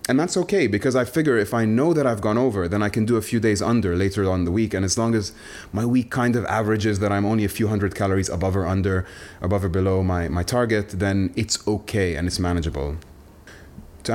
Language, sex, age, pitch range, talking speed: English, male, 30-49, 95-115 Hz, 245 wpm